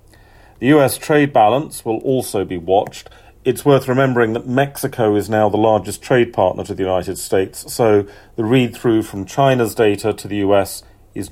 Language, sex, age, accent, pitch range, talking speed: English, male, 40-59, British, 100-120 Hz, 175 wpm